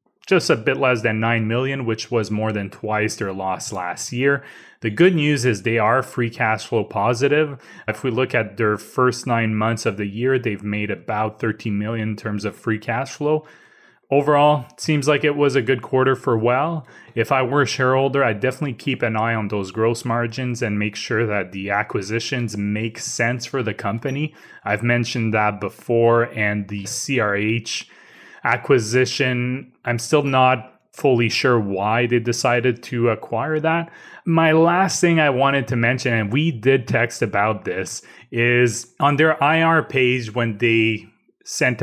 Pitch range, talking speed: 110-135 Hz, 180 wpm